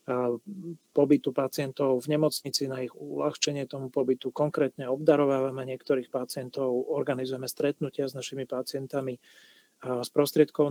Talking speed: 125 wpm